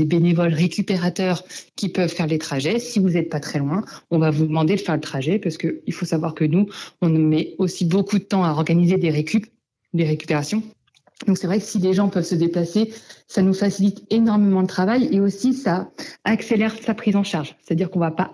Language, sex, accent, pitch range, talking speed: French, female, French, 160-200 Hz, 225 wpm